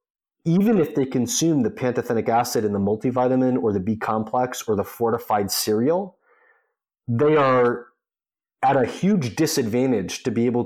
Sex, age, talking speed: male, 30-49, 150 wpm